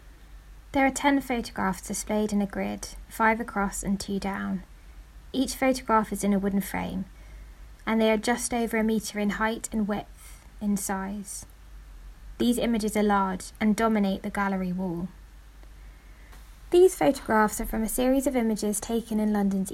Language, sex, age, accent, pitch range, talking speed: English, female, 20-39, British, 200-250 Hz, 160 wpm